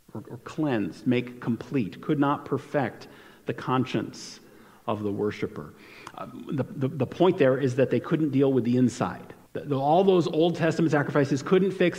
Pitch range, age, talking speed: 130-180 Hz, 40-59, 175 wpm